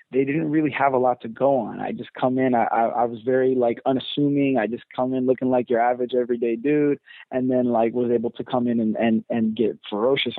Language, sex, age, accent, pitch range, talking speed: English, male, 20-39, American, 115-130 Hz, 245 wpm